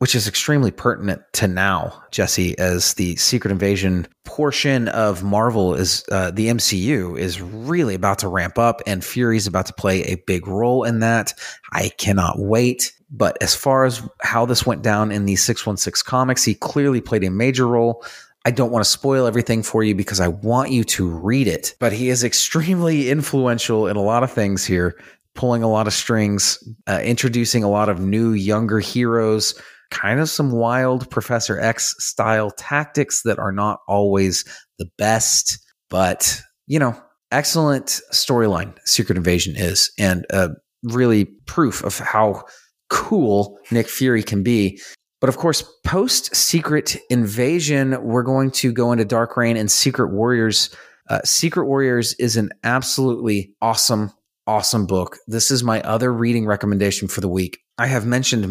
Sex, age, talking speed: male, 30-49, 170 wpm